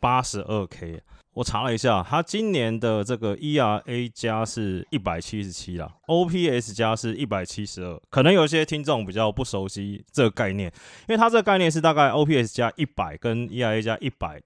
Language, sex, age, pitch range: Chinese, male, 20-39, 95-125 Hz